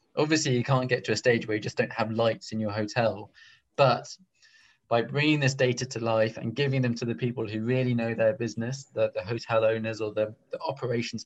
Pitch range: 110-125 Hz